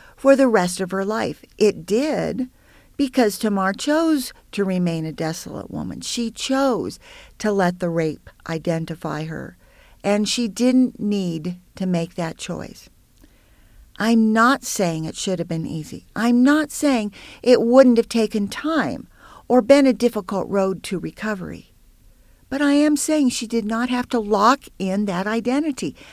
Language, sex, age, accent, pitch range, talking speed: English, female, 50-69, American, 185-245 Hz, 155 wpm